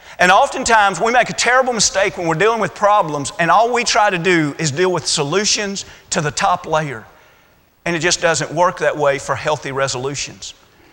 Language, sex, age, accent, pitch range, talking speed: English, male, 40-59, American, 170-215 Hz, 200 wpm